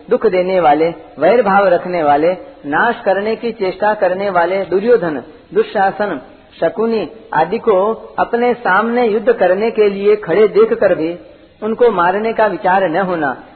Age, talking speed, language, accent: 50-69, 145 wpm, Hindi, native